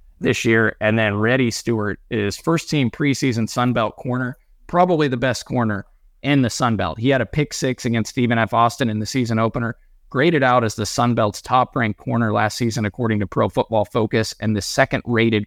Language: English